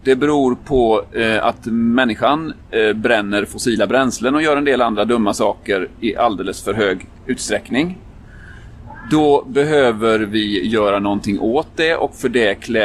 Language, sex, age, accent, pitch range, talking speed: Swedish, male, 30-49, native, 110-150 Hz, 140 wpm